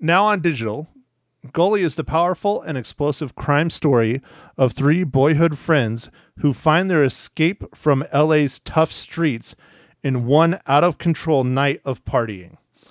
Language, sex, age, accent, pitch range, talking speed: English, male, 40-59, American, 130-165 Hz, 145 wpm